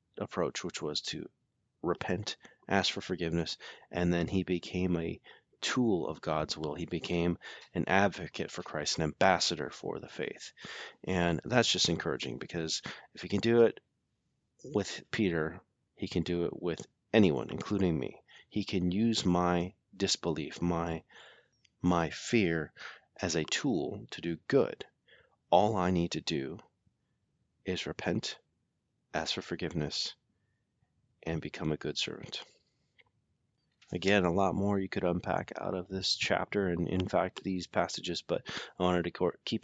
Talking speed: 150 wpm